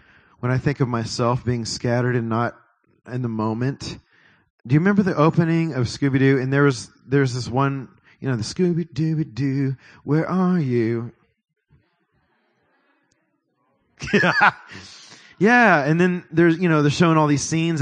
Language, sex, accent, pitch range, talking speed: English, male, American, 125-165 Hz, 155 wpm